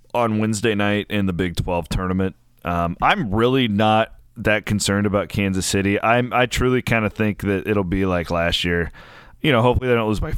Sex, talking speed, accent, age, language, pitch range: male, 210 wpm, American, 30-49, English, 95-120 Hz